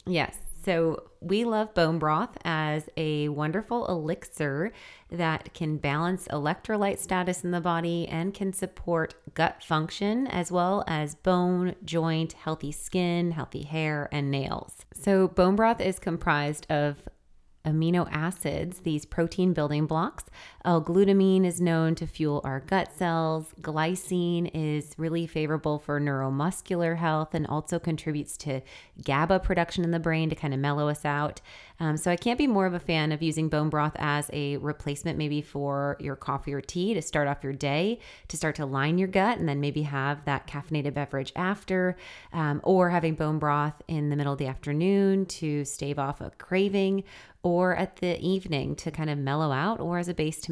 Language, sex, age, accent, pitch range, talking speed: English, female, 30-49, American, 150-180 Hz, 175 wpm